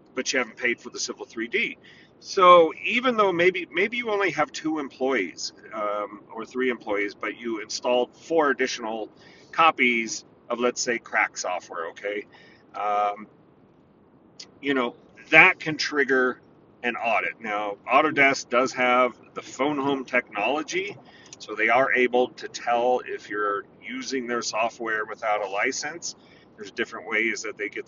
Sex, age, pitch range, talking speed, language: male, 40-59, 115-145 Hz, 150 wpm, English